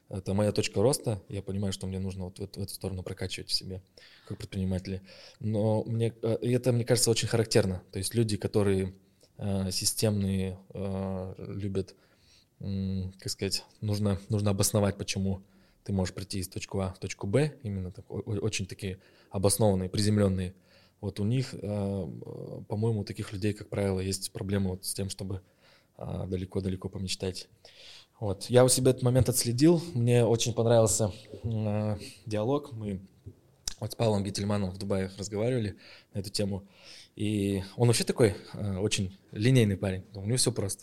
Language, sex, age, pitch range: Russian, male, 20-39, 95-115 Hz